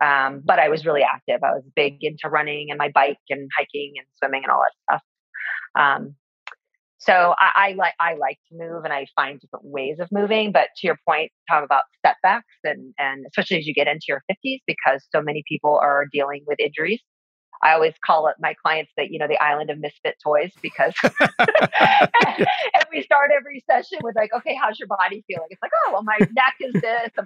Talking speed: 215 wpm